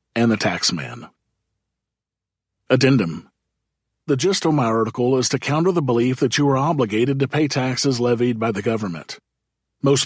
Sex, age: male, 40-59